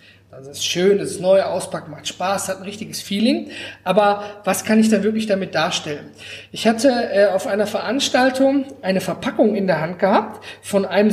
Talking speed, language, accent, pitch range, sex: 190 wpm, German, German, 180-245 Hz, male